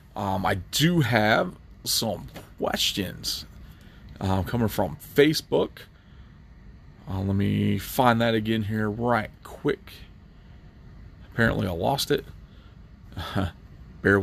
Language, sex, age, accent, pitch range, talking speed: English, male, 30-49, American, 95-110 Hz, 105 wpm